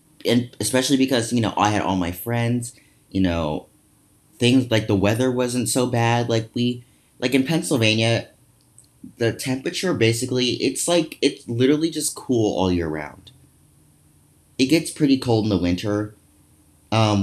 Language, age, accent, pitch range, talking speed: English, 30-49, American, 95-125 Hz, 155 wpm